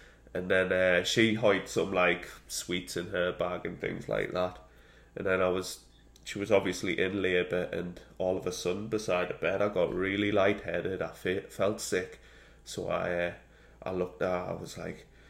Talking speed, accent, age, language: 195 wpm, British, 20-39, English